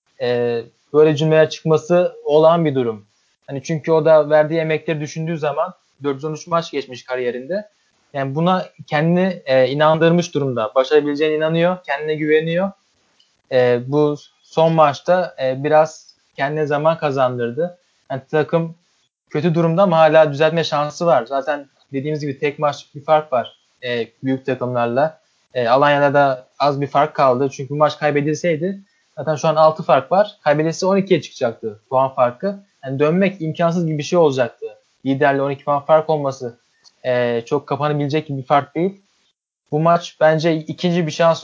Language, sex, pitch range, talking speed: Turkish, male, 140-160 Hz, 150 wpm